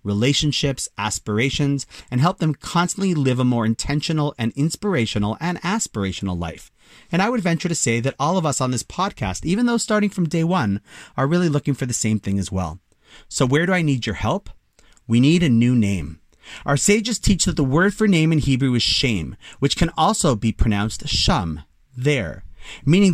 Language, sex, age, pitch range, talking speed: English, male, 30-49, 110-165 Hz, 195 wpm